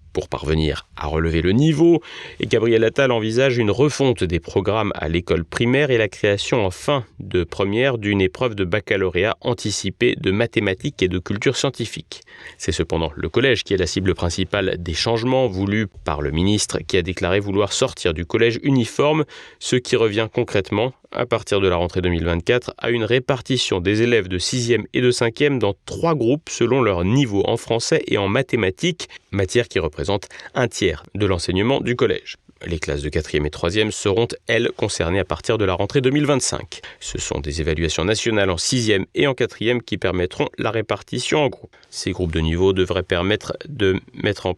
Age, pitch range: 30-49, 90-125 Hz